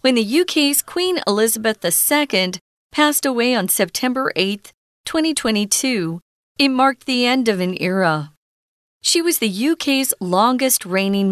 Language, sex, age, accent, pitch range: Chinese, female, 40-59, American, 185-270 Hz